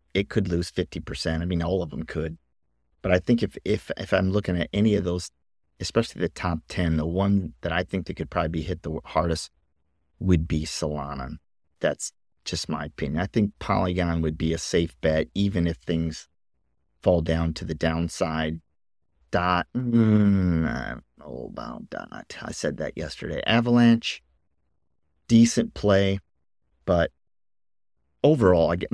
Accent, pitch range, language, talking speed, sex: American, 80-100 Hz, English, 155 wpm, male